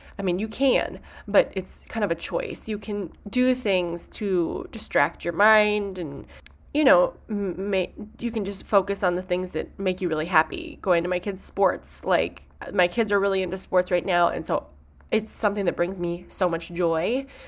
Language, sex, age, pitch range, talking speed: English, female, 20-39, 165-200 Hz, 205 wpm